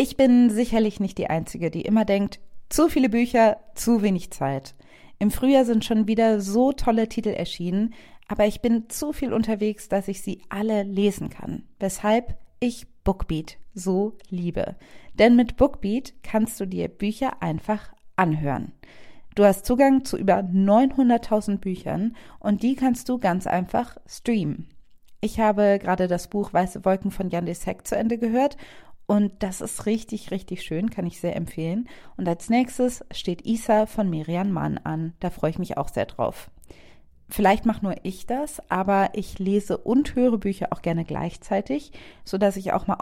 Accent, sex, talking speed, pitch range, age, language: German, female, 170 wpm, 185-230 Hz, 40-59, German